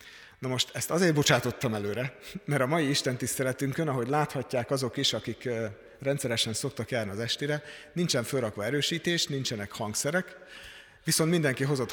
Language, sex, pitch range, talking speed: Hungarian, male, 120-155 Hz, 145 wpm